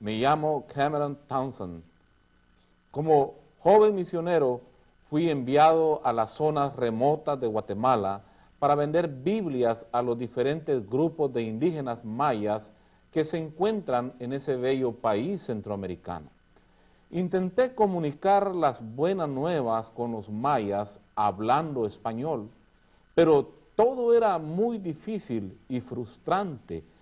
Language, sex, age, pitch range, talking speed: Spanish, male, 50-69, 115-165 Hz, 110 wpm